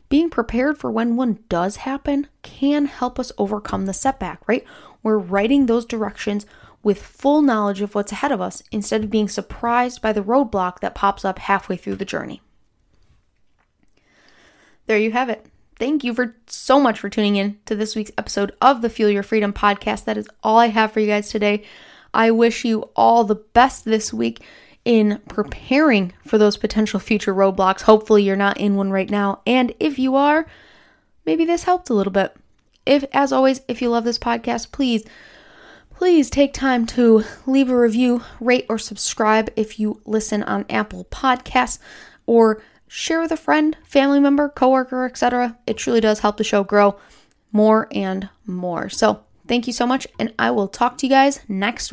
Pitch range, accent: 205-255 Hz, American